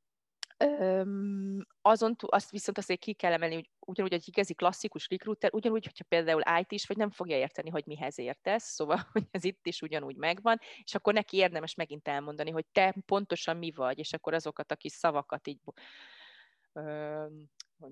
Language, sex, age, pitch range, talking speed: Hungarian, female, 20-39, 155-200 Hz, 180 wpm